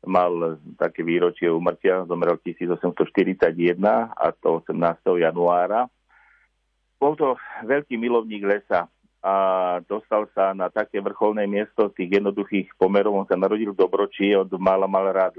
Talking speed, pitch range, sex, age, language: 135 wpm, 95-110 Hz, male, 50-69, Slovak